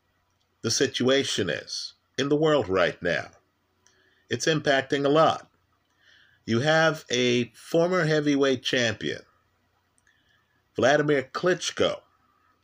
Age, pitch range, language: 50-69, 95-145 Hz, English